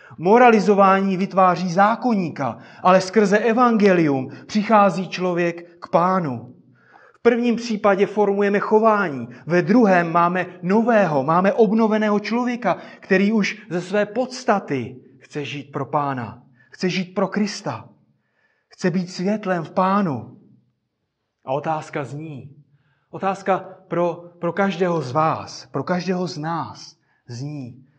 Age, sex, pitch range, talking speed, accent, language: 30-49, male, 145-200 Hz, 115 wpm, native, Czech